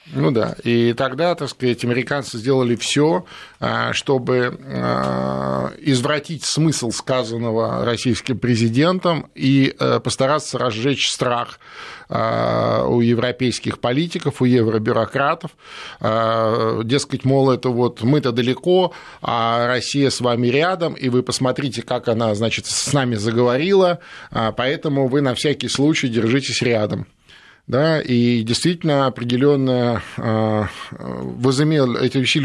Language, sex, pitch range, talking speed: Russian, male, 115-140 Hz, 105 wpm